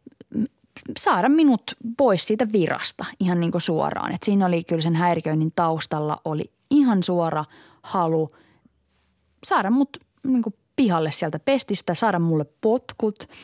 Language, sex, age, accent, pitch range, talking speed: Finnish, female, 20-39, native, 155-195 Hz, 135 wpm